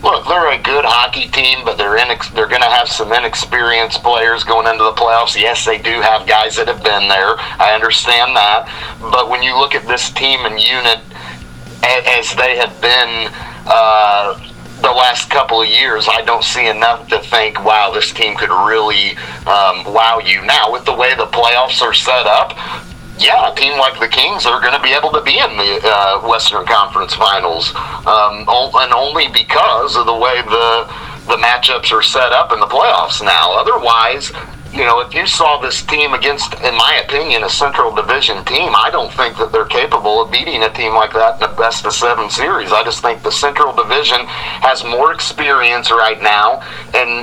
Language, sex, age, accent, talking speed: English, male, 40-59, American, 195 wpm